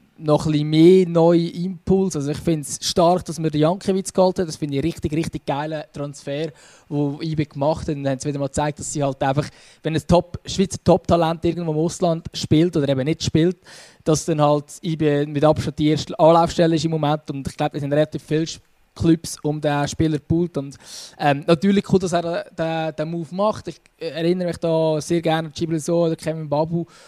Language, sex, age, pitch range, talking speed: German, male, 20-39, 155-175 Hz, 210 wpm